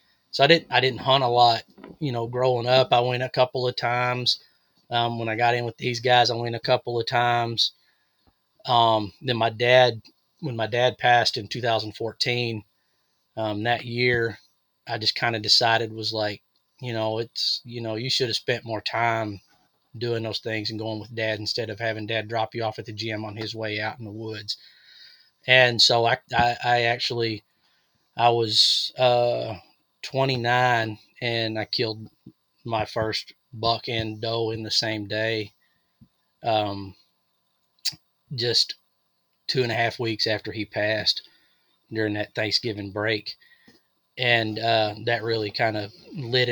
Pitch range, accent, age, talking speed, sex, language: 110-120 Hz, American, 20-39, 170 wpm, male, English